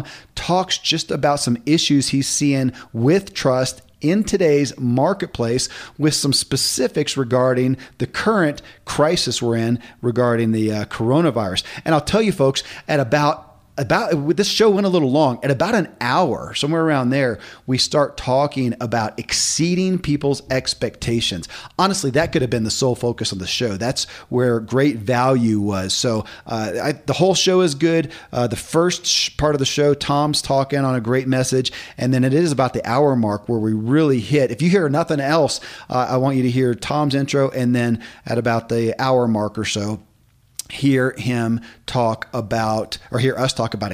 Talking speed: 180 wpm